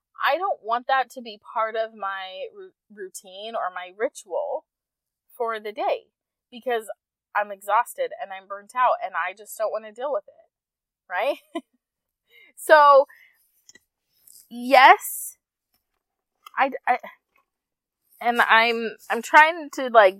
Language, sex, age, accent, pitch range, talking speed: English, female, 20-39, American, 210-290 Hz, 130 wpm